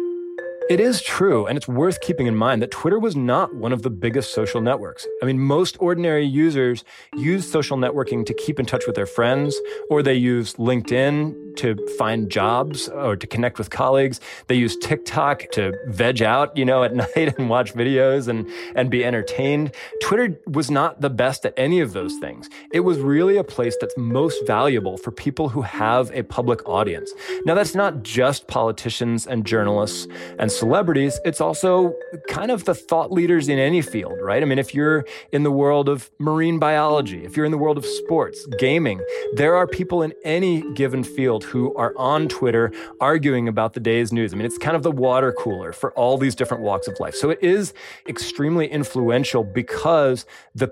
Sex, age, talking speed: male, 20-39, 195 wpm